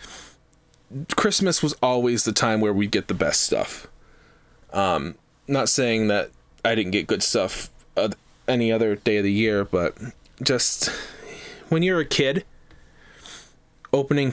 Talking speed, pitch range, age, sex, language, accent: 145 wpm, 110-130 Hz, 20-39, male, English, American